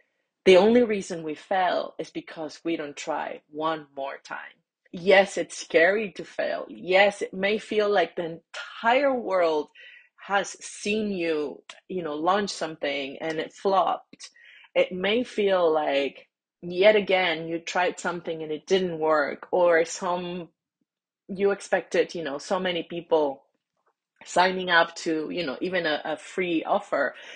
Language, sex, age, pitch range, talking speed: English, female, 30-49, 165-215 Hz, 150 wpm